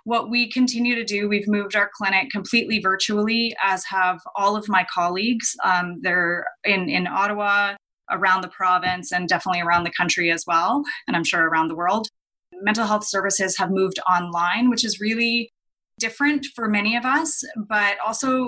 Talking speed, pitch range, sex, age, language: 175 wpm, 185-230 Hz, female, 20-39, English